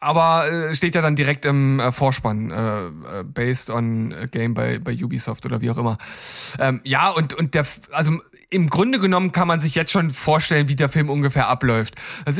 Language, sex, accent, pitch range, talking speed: German, male, German, 135-180 Hz, 190 wpm